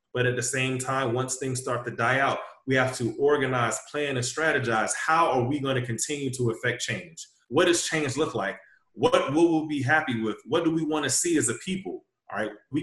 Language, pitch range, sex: English, 115-135 Hz, male